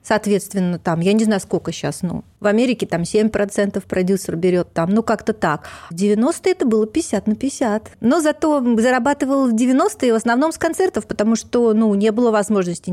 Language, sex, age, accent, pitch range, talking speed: Russian, female, 30-49, native, 190-250 Hz, 185 wpm